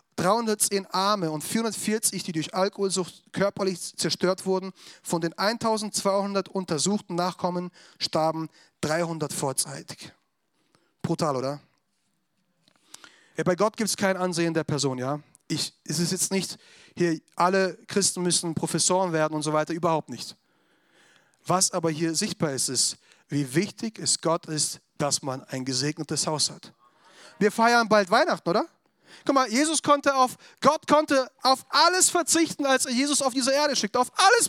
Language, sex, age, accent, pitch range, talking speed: German, male, 30-49, German, 165-255 Hz, 150 wpm